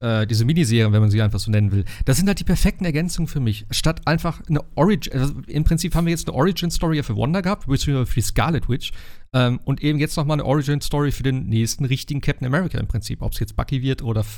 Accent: German